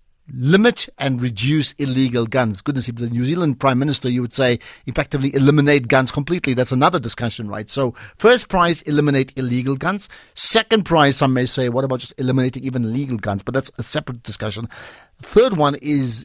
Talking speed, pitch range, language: 180 wpm, 120-150 Hz, English